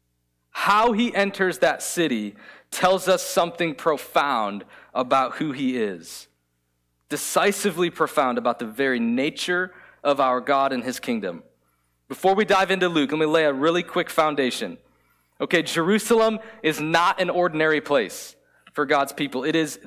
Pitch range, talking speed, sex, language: 145-200 Hz, 150 wpm, male, English